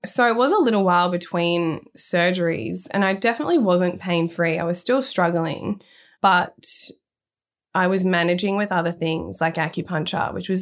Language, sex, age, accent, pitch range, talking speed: English, female, 20-39, Australian, 170-200 Hz, 165 wpm